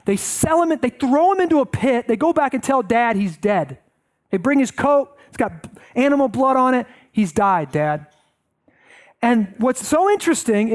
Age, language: 30-49, English